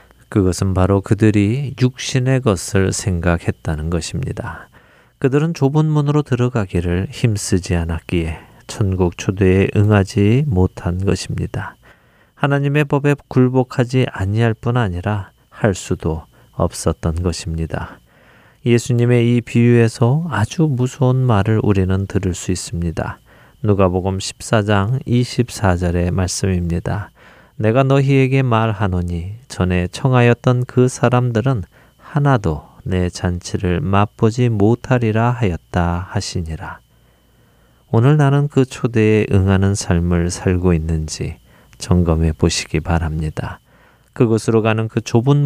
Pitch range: 90-125 Hz